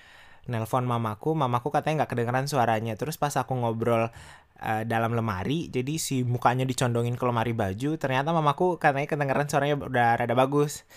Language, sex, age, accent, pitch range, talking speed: Indonesian, male, 20-39, native, 115-140 Hz, 160 wpm